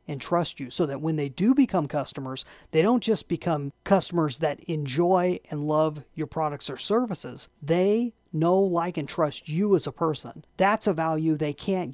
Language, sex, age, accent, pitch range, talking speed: English, male, 30-49, American, 150-195 Hz, 185 wpm